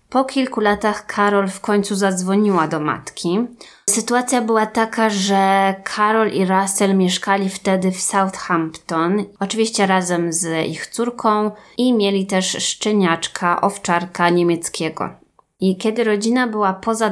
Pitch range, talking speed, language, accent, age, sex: 175-205 Hz, 125 wpm, Polish, native, 20-39, female